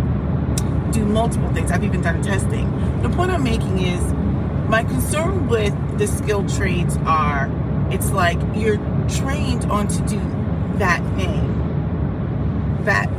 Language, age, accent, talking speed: English, 30-49, American, 130 wpm